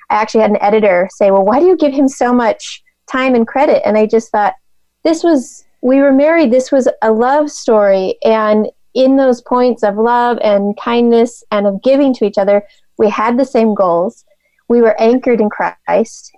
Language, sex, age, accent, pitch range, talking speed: English, female, 30-49, American, 210-260 Hz, 200 wpm